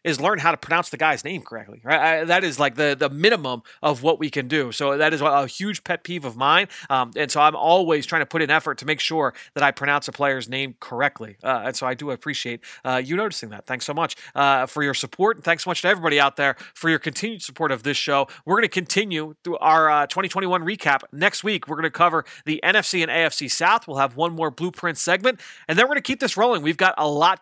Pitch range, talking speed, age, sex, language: 145-195 Hz, 265 wpm, 30-49, male, English